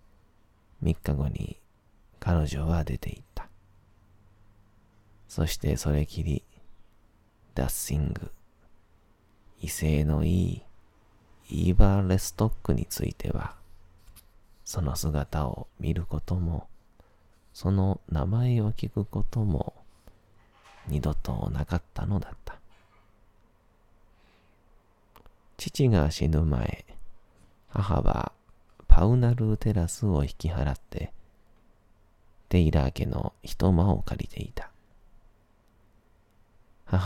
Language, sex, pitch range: Japanese, male, 80-105 Hz